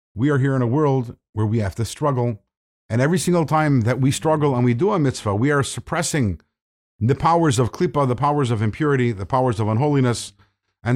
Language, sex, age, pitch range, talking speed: English, male, 50-69, 110-160 Hz, 215 wpm